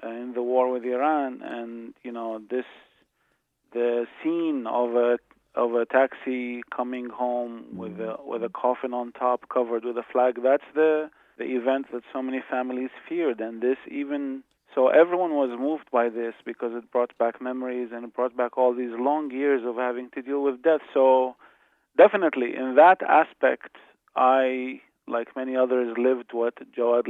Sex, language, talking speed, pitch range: male, English, 170 wpm, 120-130 Hz